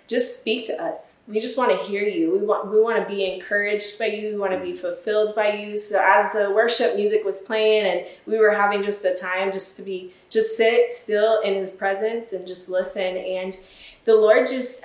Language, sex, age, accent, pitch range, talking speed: English, female, 20-39, American, 195-220 Hz, 225 wpm